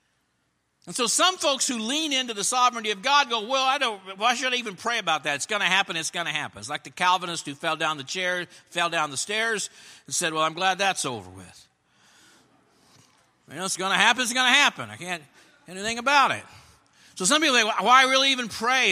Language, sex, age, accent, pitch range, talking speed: English, male, 60-79, American, 175-260 Hz, 245 wpm